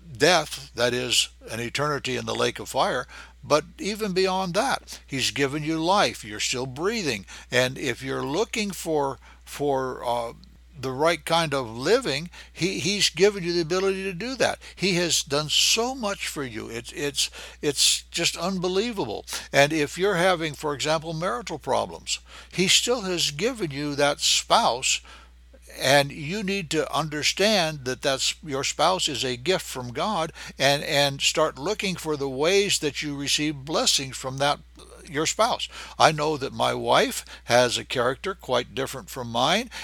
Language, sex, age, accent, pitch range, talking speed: English, male, 60-79, American, 130-175 Hz, 165 wpm